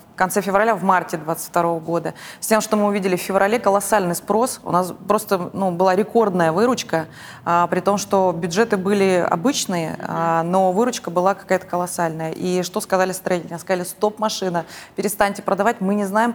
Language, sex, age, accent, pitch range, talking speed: Russian, female, 20-39, native, 175-205 Hz, 175 wpm